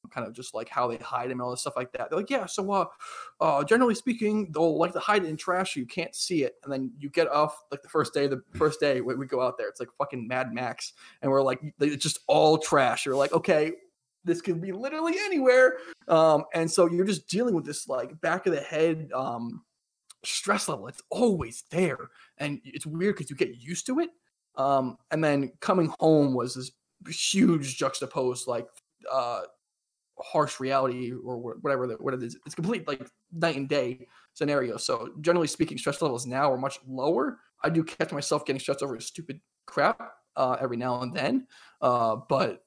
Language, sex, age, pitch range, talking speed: English, male, 20-39, 130-175 Hz, 210 wpm